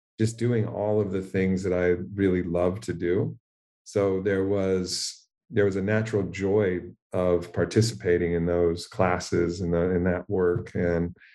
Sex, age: male, 40-59